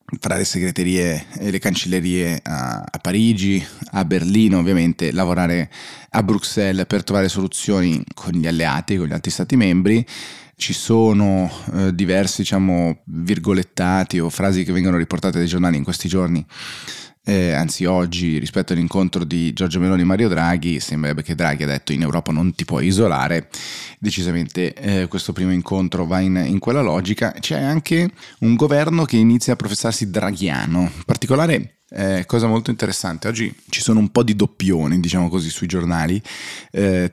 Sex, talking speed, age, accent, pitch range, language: male, 160 wpm, 20-39, native, 90-105 Hz, Italian